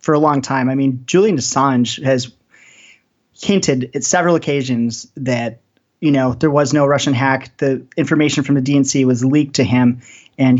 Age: 30-49